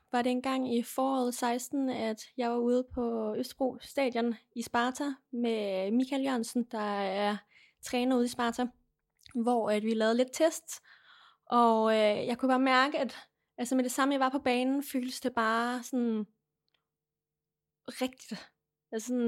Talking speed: 160 wpm